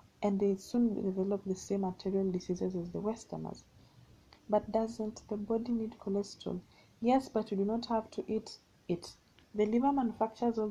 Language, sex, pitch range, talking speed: English, female, 190-225 Hz, 170 wpm